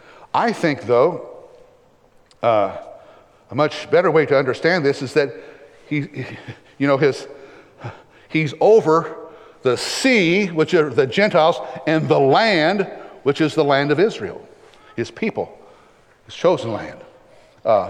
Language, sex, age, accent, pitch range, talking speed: English, male, 60-79, American, 135-180 Hz, 135 wpm